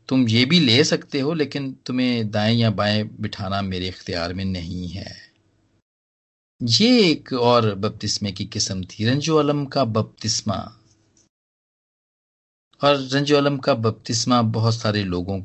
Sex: male